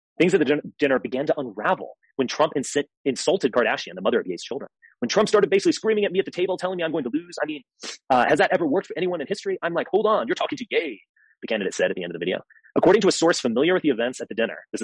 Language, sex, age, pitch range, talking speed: English, male, 30-49, 110-160 Hz, 295 wpm